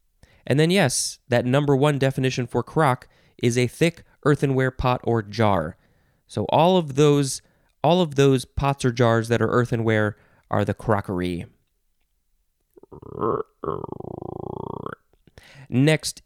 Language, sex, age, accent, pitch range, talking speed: English, male, 20-39, American, 120-160 Hz, 120 wpm